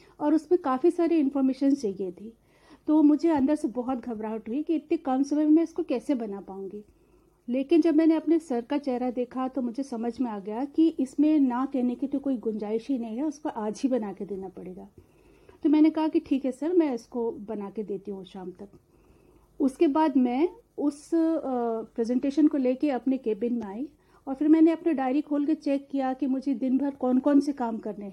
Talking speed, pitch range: 215 wpm, 235-300 Hz